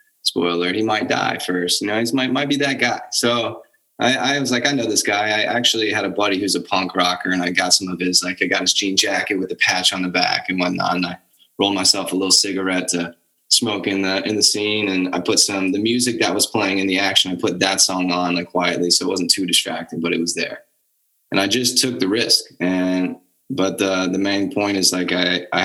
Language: English